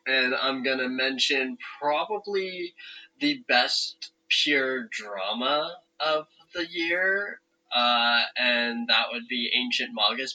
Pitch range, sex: 115-145 Hz, male